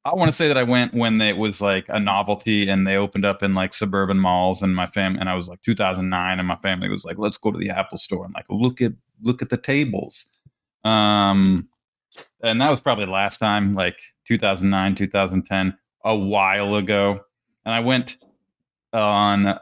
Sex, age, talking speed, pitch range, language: male, 20-39, 195 wpm, 95-115 Hz, English